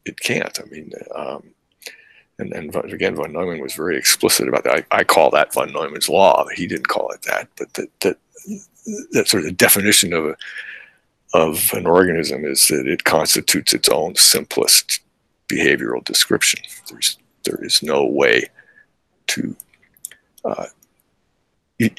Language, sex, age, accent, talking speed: English, male, 60-79, American, 155 wpm